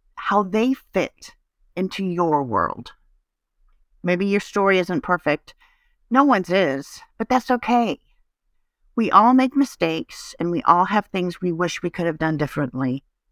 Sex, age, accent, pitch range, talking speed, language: female, 50-69, American, 165-205 Hz, 150 wpm, English